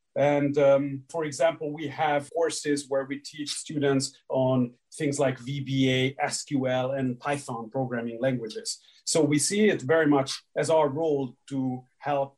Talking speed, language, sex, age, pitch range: 150 wpm, English, male, 40-59, 130-150 Hz